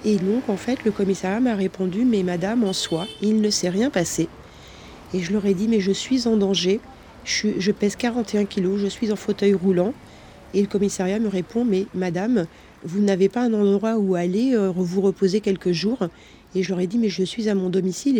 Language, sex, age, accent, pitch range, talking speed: French, female, 40-59, French, 190-215 Hz, 220 wpm